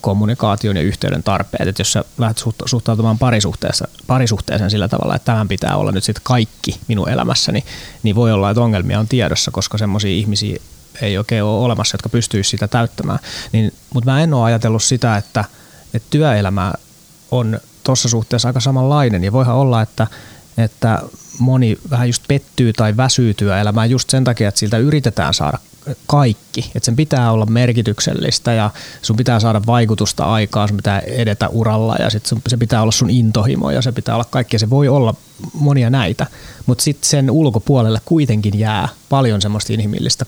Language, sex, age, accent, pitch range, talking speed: Finnish, male, 30-49, native, 110-130 Hz, 175 wpm